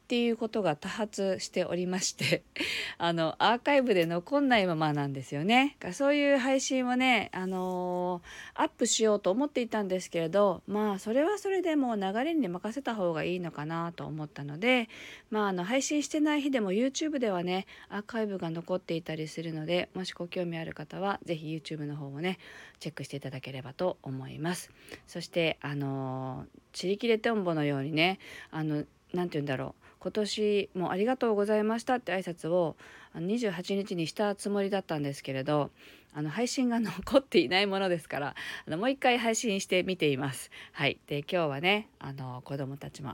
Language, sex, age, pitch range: Japanese, female, 40-59, 145-210 Hz